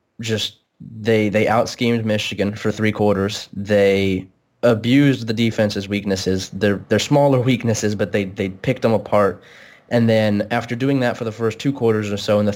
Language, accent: English, American